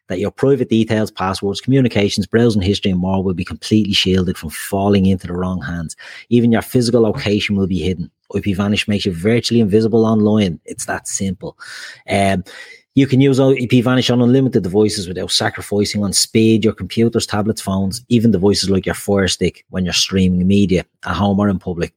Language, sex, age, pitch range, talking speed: English, male, 30-49, 95-115 Hz, 190 wpm